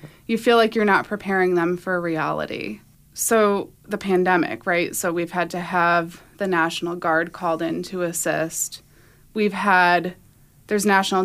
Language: English